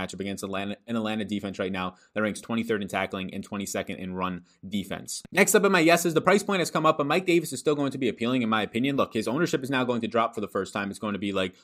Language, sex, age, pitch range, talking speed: English, male, 20-39, 105-140 Hz, 300 wpm